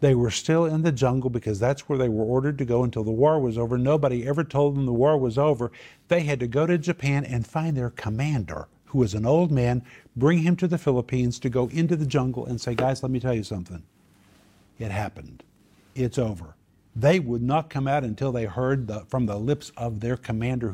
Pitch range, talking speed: 110-165 Hz, 225 wpm